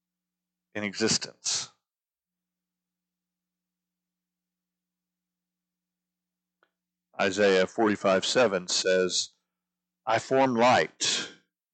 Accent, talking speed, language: American, 50 wpm, English